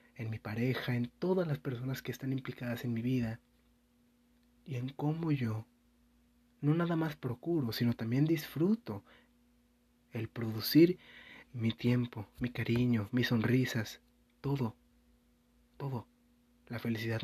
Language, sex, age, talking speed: Spanish, male, 30-49, 125 wpm